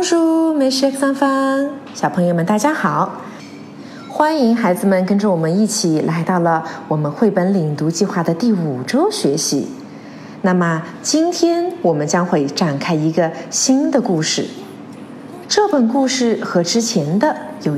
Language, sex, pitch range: Chinese, female, 175-270 Hz